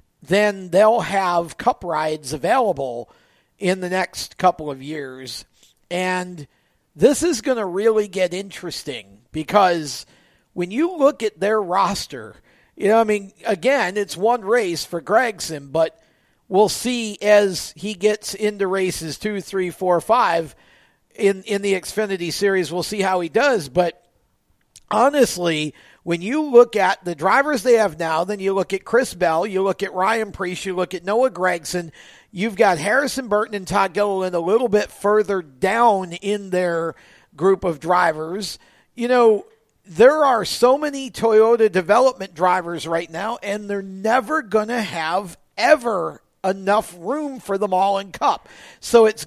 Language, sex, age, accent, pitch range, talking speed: English, male, 50-69, American, 175-220 Hz, 160 wpm